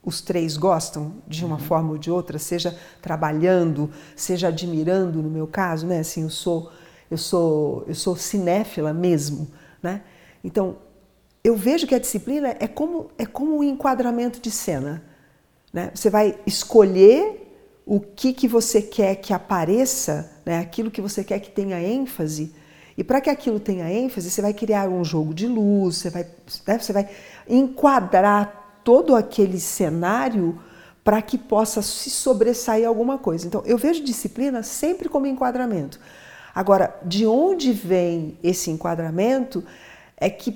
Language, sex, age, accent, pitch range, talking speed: Portuguese, female, 50-69, Brazilian, 175-230 Hz, 155 wpm